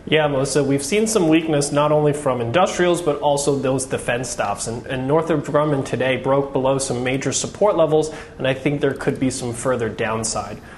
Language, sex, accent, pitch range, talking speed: English, male, American, 130-165 Hz, 195 wpm